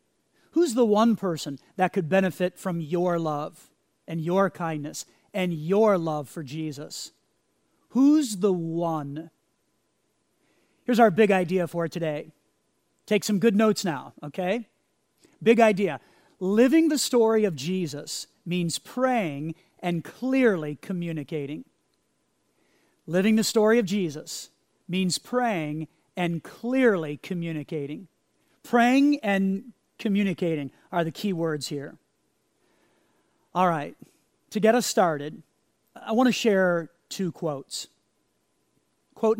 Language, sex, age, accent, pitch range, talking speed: English, male, 40-59, American, 160-220 Hz, 115 wpm